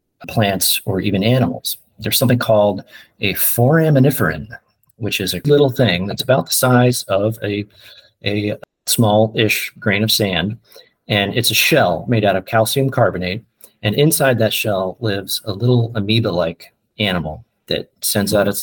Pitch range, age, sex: 100-120 Hz, 40-59, male